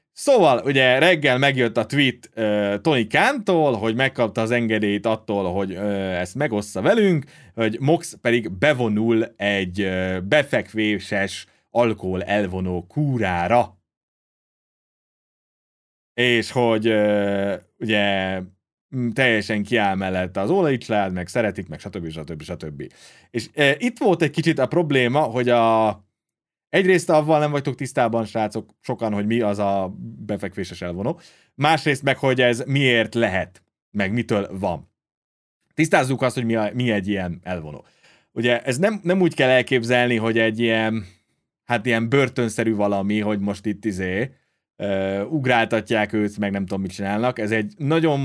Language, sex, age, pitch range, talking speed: Hungarian, male, 30-49, 100-130 Hz, 145 wpm